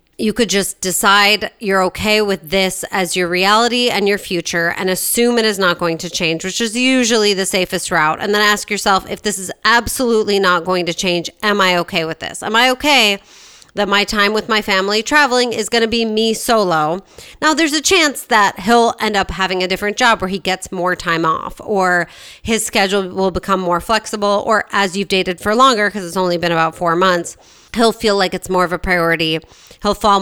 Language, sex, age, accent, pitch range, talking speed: English, female, 30-49, American, 180-220 Hz, 215 wpm